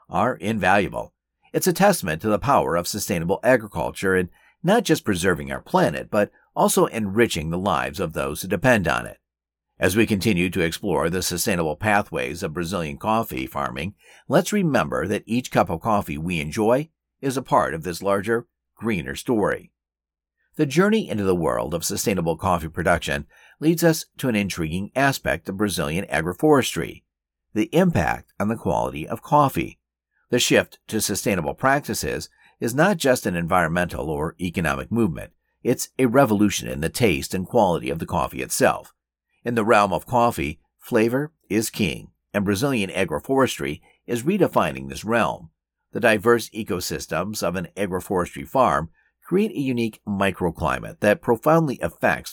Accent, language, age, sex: American, English, 50-69, male